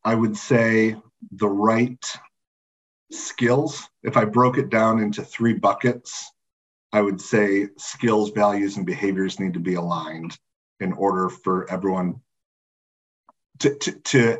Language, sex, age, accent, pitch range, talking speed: English, male, 40-59, American, 95-110 Hz, 125 wpm